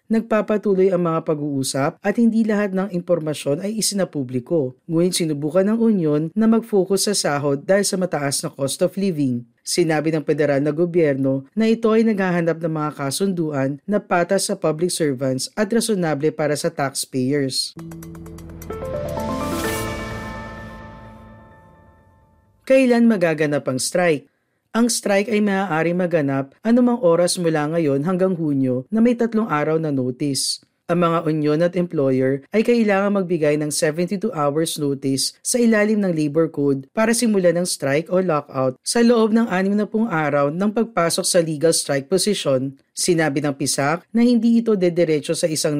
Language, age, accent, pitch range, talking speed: Filipino, 40-59, native, 140-195 Hz, 145 wpm